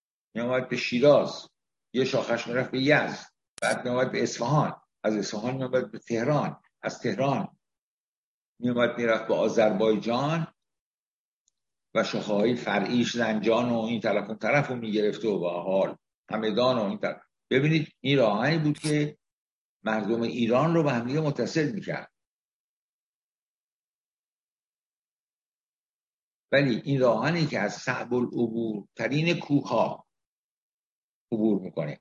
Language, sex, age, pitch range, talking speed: Persian, male, 60-79, 115-140 Hz, 115 wpm